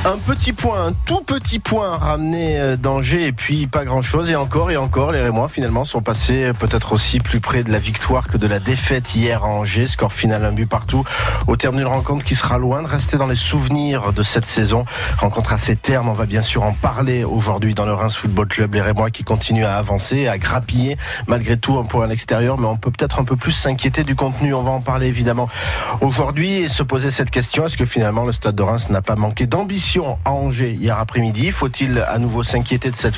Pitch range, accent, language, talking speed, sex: 110-130 Hz, French, French, 235 wpm, male